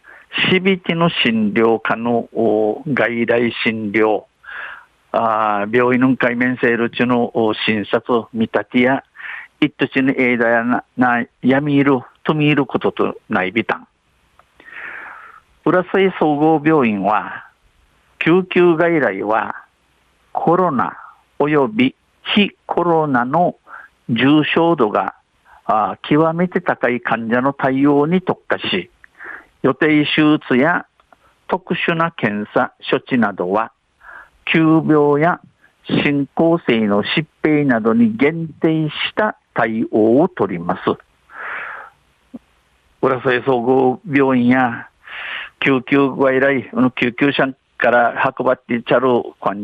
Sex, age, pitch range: male, 50-69, 120-155 Hz